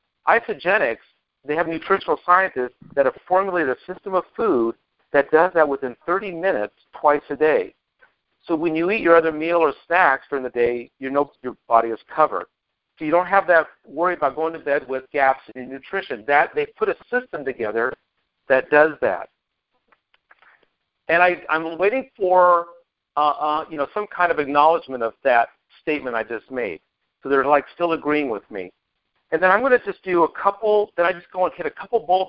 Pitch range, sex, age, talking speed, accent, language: 145-175 Hz, male, 50-69, 195 wpm, American, English